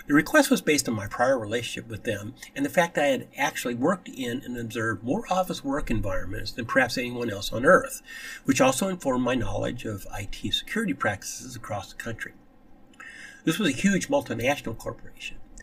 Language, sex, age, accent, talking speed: English, male, 60-79, American, 185 wpm